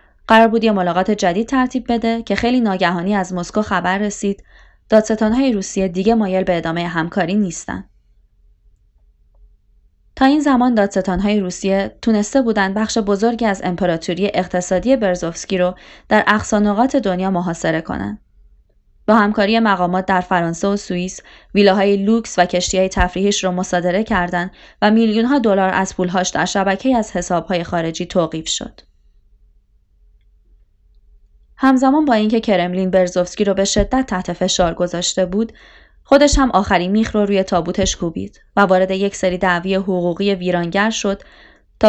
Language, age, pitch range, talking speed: Persian, 20-39, 180-215 Hz, 145 wpm